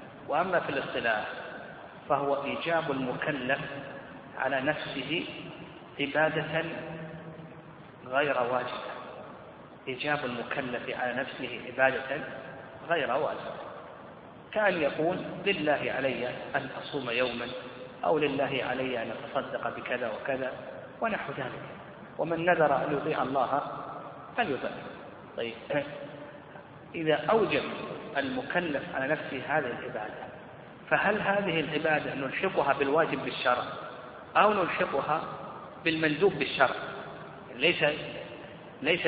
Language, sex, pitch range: Arabic, male, 135-175 Hz